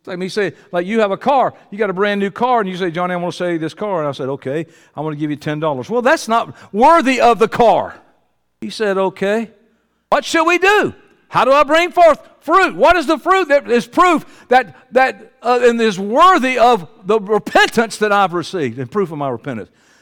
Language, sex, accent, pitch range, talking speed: English, male, American, 175-245 Hz, 240 wpm